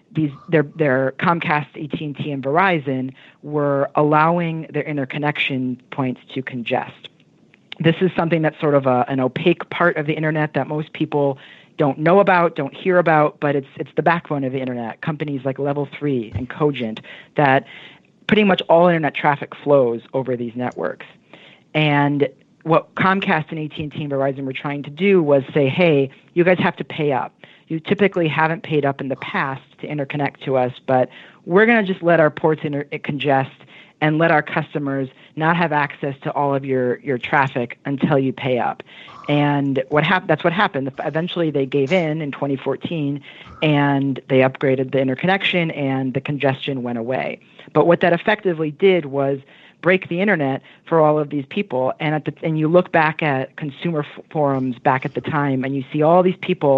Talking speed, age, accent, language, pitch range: 185 wpm, 40-59, American, English, 135-165 Hz